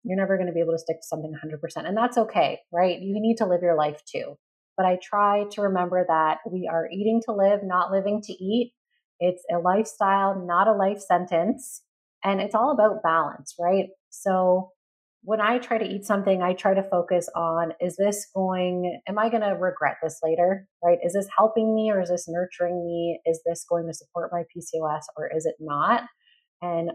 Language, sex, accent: English, female, American